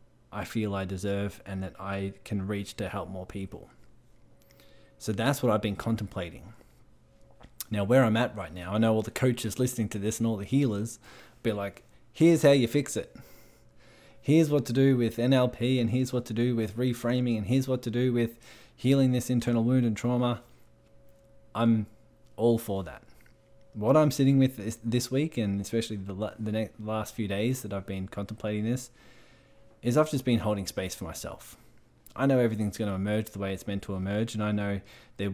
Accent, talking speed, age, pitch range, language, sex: Australian, 200 wpm, 20-39, 100-120 Hz, English, male